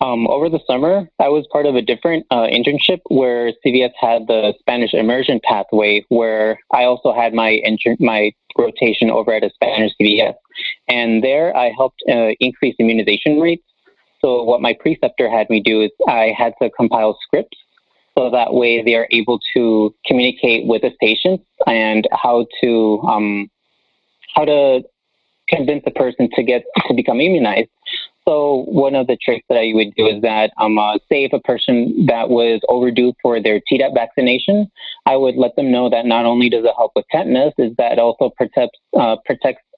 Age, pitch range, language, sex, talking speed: 30-49, 110-130 Hz, English, male, 185 wpm